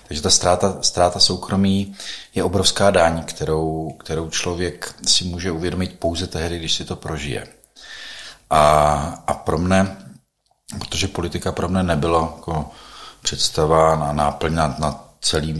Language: Czech